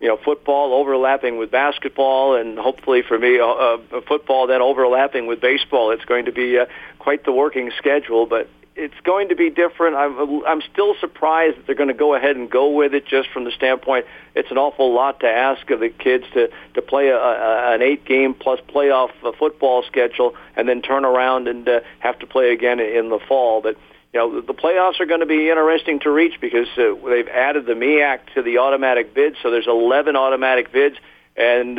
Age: 50-69